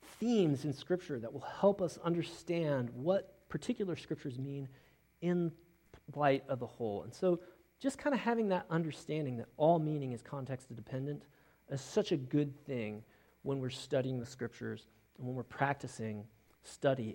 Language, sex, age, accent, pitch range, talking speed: English, male, 40-59, American, 130-180 Hz, 160 wpm